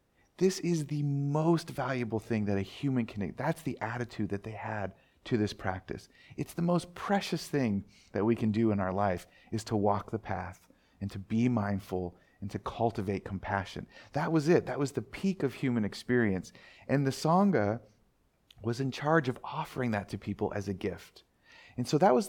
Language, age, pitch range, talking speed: English, 40-59, 100-135 Hz, 195 wpm